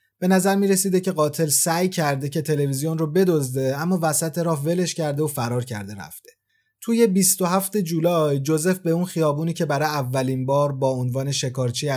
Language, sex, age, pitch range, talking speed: Persian, male, 30-49, 135-175 Hz, 170 wpm